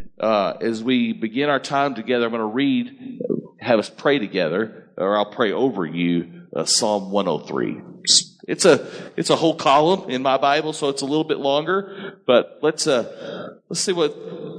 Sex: male